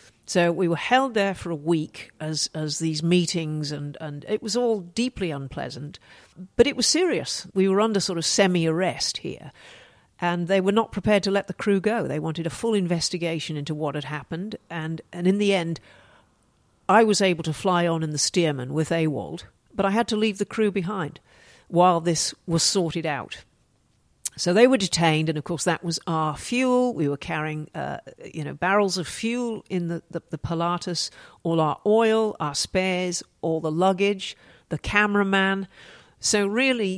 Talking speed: 185 wpm